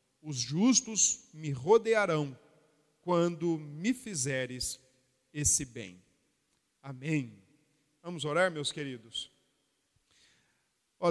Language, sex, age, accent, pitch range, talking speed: Portuguese, male, 40-59, Brazilian, 135-165 Hz, 80 wpm